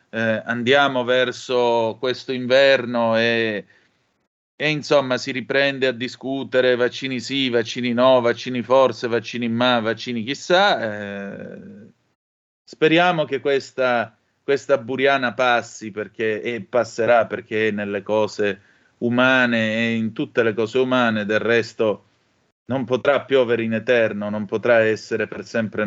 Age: 30-49